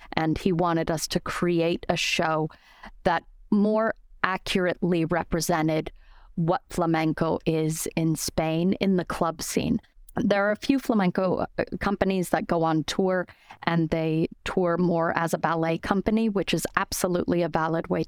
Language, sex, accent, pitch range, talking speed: English, female, American, 160-180 Hz, 150 wpm